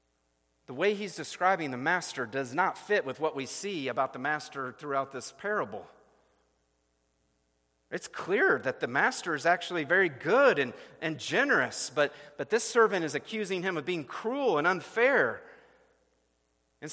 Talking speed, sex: 155 wpm, male